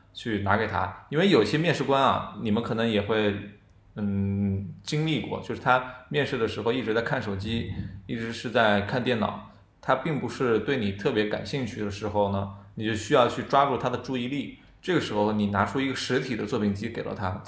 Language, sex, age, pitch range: Chinese, male, 20-39, 100-120 Hz